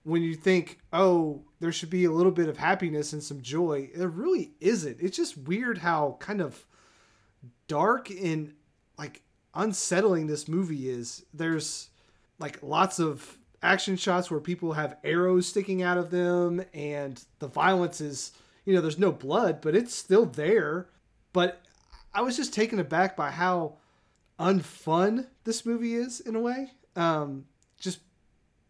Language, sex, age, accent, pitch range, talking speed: English, male, 30-49, American, 145-185 Hz, 155 wpm